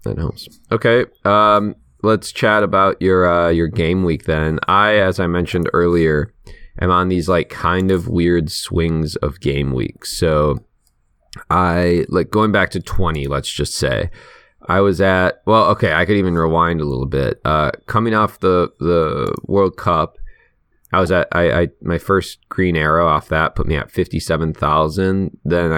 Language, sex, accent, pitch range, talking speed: English, male, American, 80-100 Hz, 175 wpm